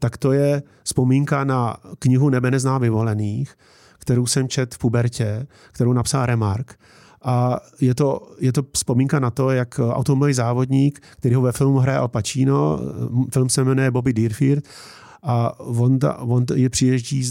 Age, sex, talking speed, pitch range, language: 40-59, male, 155 wpm, 120-135 Hz, Czech